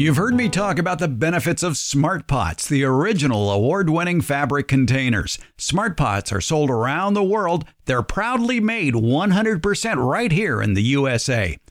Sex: male